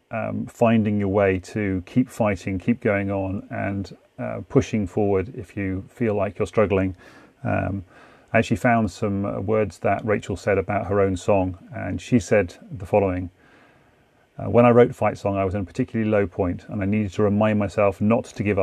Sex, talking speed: male, 190 wpm